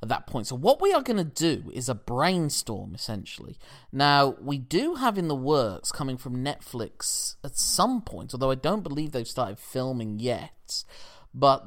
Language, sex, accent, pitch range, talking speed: English, male, British, 115-140 Hz, 185 wpm